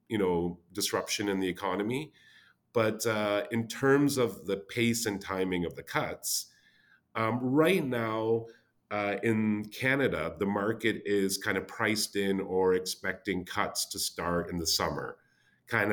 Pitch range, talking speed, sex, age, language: 95-115 Hz, 150 wpm, male, 40-59, English